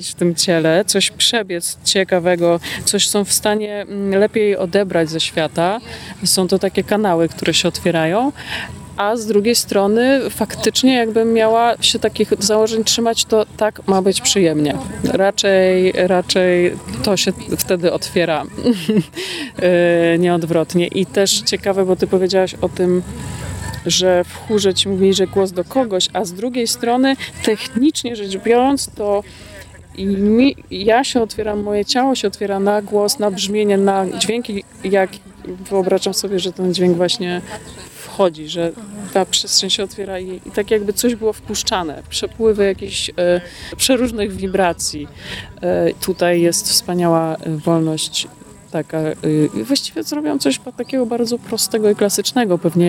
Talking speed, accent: 135 wpm, native